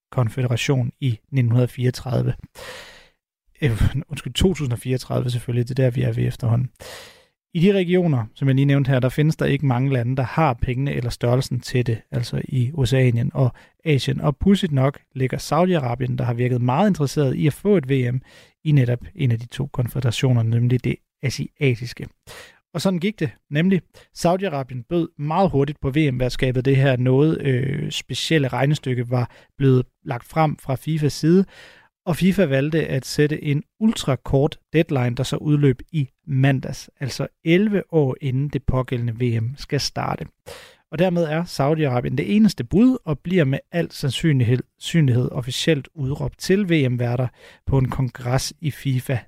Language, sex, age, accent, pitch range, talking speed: Danish, male, 30-49, native, 125-155 Hz, 160 wpm